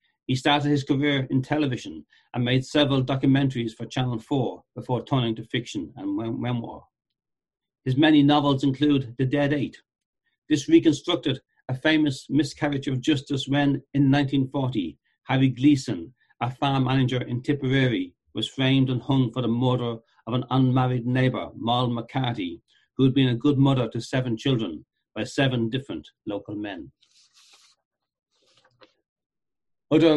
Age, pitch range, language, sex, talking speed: 60-79, 120-145 Hz, English, male, 140 wpm